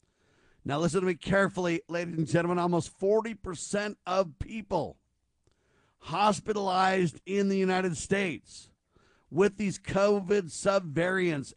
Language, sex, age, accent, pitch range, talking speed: English, male, 50-69, American, 155-190 Hz, 110 wpm